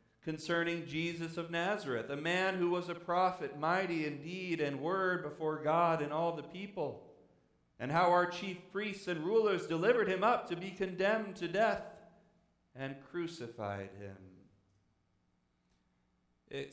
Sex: male